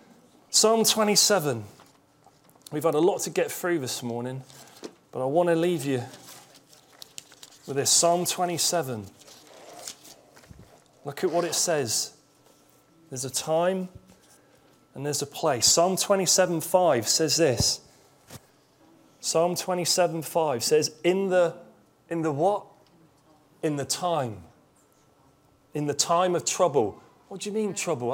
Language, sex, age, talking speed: English, male, 30-49, 130 wpm